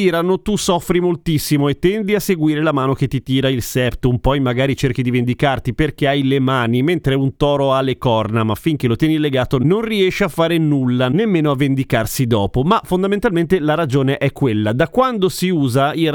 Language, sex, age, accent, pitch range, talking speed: Italian, male, 30-49, native, 120-160 Hz, 205 wpm